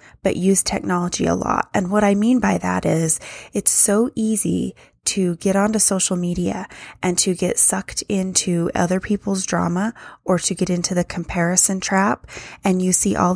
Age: 20-39